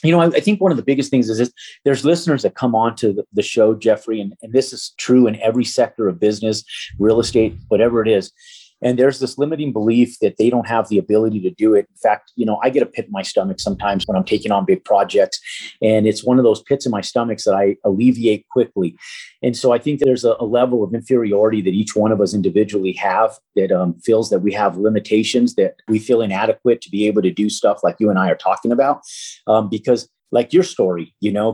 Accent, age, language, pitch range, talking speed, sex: American, 30-49, English, 105-130 Hz, 240 wpm, male